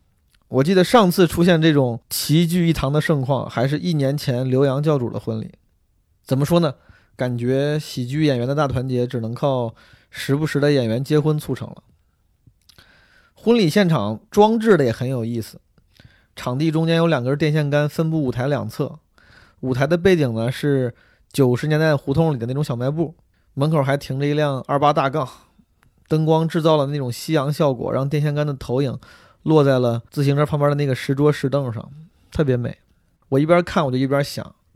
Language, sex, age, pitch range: Chinese, male, 20-39, 125-155 Hz